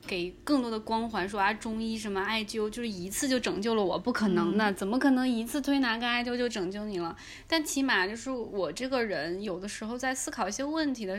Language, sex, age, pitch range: Chinese, female, 20-39, 200-255 Hz